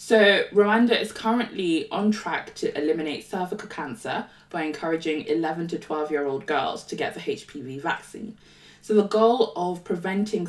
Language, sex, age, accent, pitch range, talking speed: English, female, 20-39, British, 150-190 Hz, 160 wpm